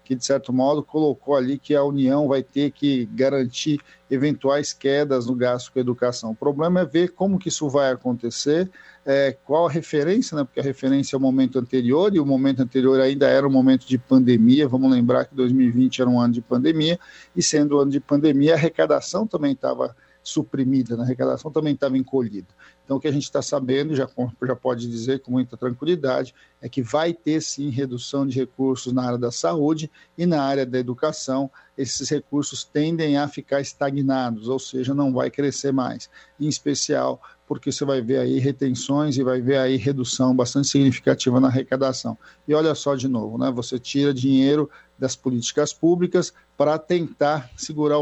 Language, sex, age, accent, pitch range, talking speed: Portuguese, male, 50-69, Brazilian, 130-145 Hz, 190 wpm